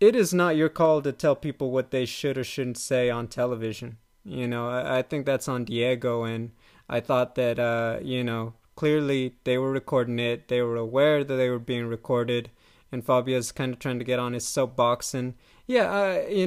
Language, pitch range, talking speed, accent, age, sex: English, 125-145 Hz, 210 wpm, American, 20-39, male